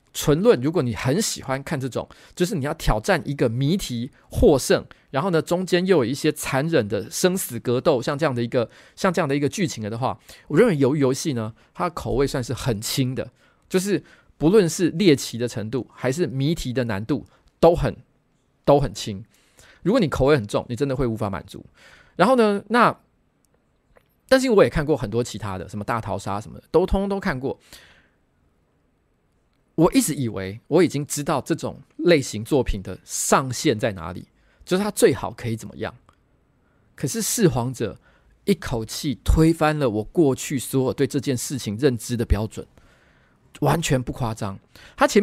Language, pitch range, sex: Chinese, 115-160 Hz, male